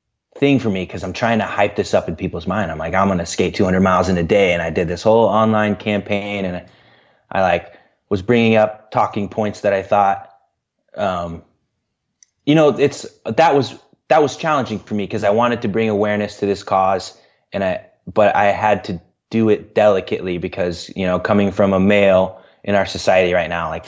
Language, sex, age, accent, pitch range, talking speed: English, male, 20-39, American, 90-110 Hz, 210 wpm